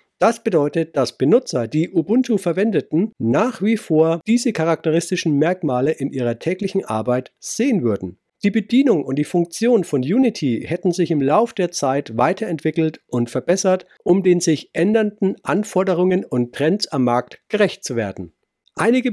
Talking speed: 150 wpm